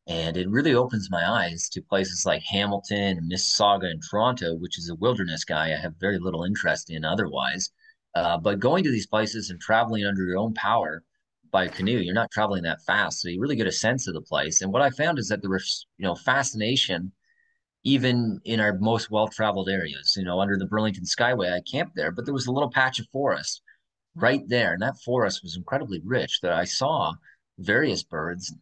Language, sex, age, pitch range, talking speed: English, male, 30-49, 90-110 Hz, 210 wpm